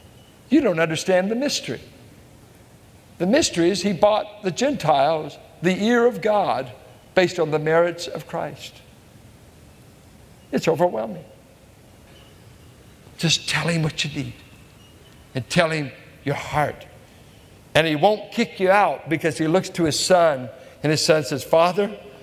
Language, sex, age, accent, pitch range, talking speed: English, male, 60-79, American, 150-205 Hz, 140 wpm